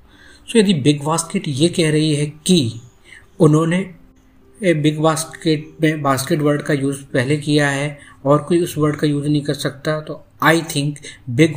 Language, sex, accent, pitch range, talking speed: Hindi, male, native, 125-150 Hz, 170 wpm